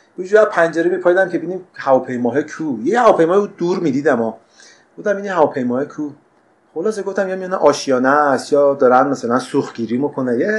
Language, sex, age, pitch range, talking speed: Persian, male, 30-49, 145-195 Hz, 175 wpm